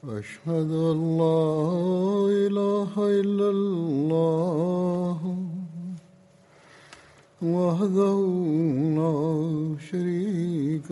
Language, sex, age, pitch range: Russian, male, 60-79, 155-195 Hz